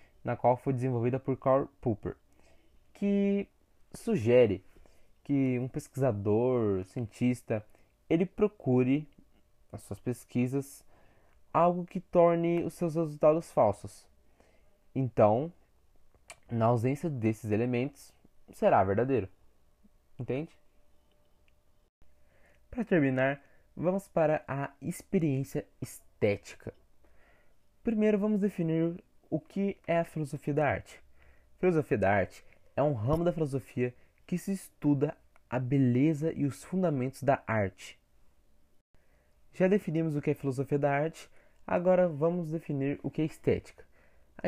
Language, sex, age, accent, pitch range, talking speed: Portuguese, male, 20-39, Brazilian, 115-165 Hz, 115 wpm